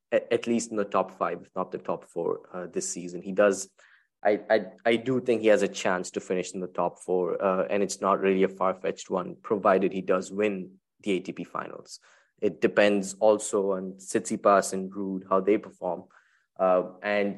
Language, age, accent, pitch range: English, 20-39, Indian, 95-105 Hz